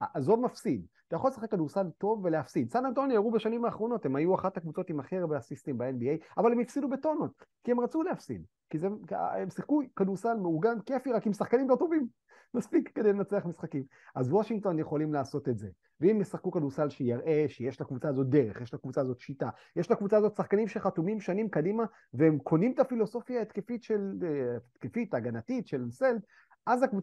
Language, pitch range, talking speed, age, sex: Hebrew, 145-220 Hz, 160 wpm, 30-49, male